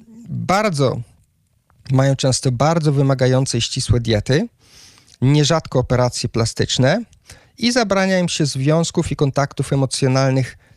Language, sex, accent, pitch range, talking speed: Polish, male, native, 125-150 Hz, 105 wpm